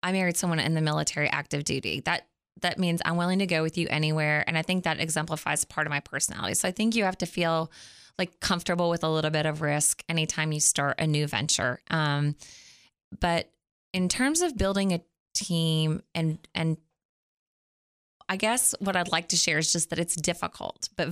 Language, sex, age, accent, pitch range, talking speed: English, female, 20-39, American, 155-180 Hz, 200 wpm